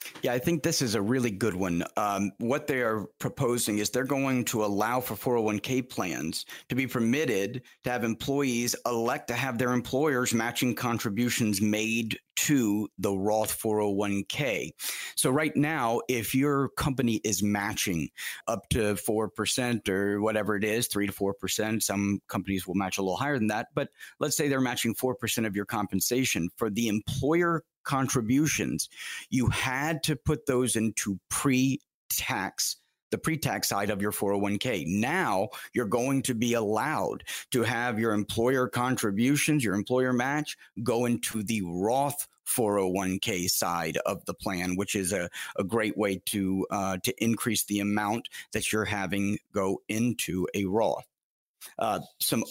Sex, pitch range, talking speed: male, 105-125 Hz, 155 wpm